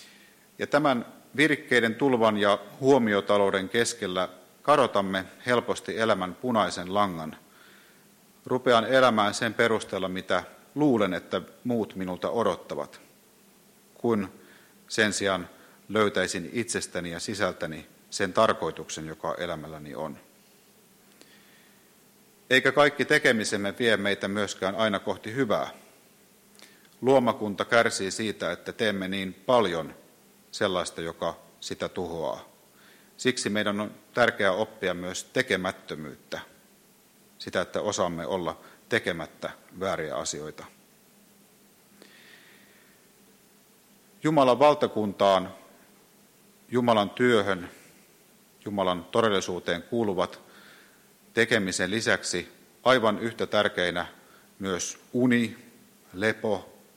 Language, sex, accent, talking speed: Finnish, male, native, 85 wpm